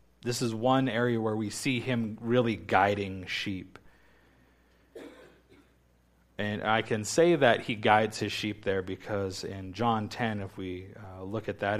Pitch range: 90-110 Hz